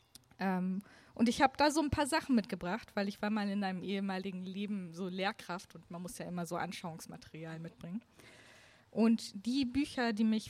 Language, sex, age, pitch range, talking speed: German, female, 20-39, 180-210 Hz, 185 wpm